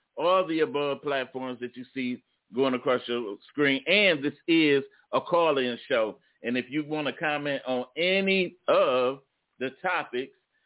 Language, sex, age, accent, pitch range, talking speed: English, male, 40-59, American, 120-145 Hz, 160 wpm